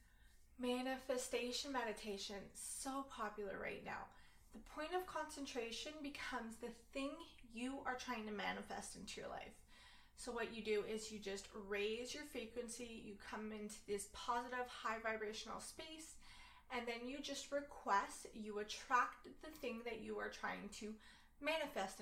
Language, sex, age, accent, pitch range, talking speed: English, female, 20-39, American, 215-255 Hz, 145 wpm